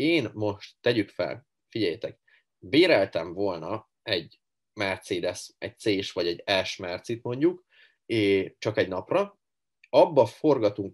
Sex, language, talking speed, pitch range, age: male, Hungarian, 115 wpm, 100-125 Hz, 20-39